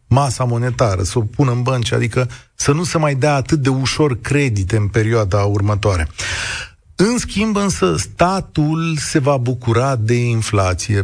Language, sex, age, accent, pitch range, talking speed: Romanian, male, 30-49, native, 110-155 Hz, 160 wpm